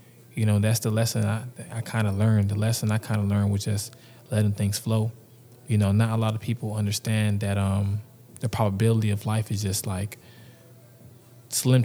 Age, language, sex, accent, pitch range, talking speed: 20-39, English, male, American, 110-125 Hz, 190 wpm